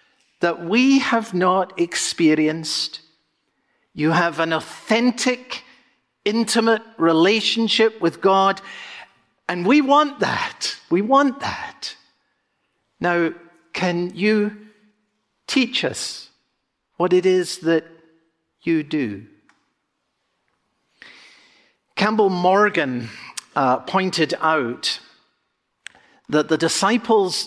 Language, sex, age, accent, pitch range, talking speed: English, male, 50-69, British, 175-245 Hz, 85 wpm